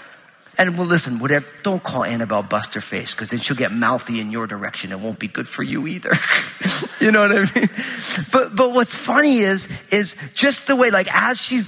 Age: 30-49